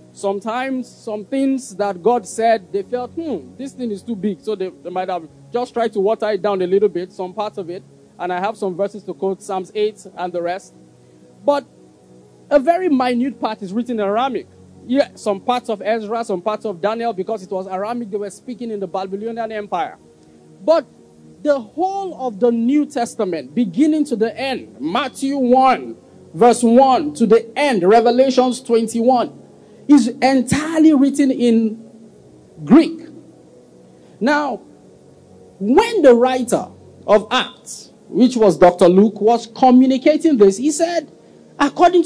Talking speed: 160 wpm